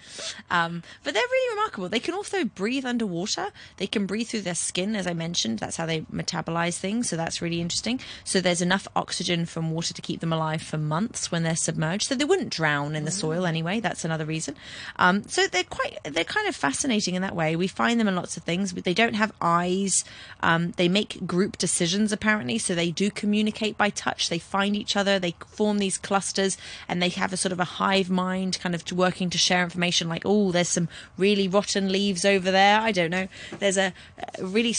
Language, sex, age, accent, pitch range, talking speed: English, female, 20-39, British, 170-225 Hz, 220 wpm